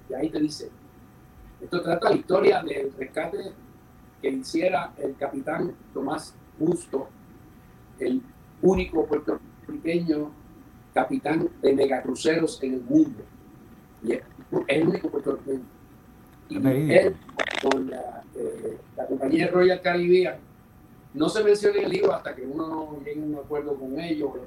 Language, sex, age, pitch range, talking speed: Spanish, male, 50-69, 145-195 Hz, 135 wpm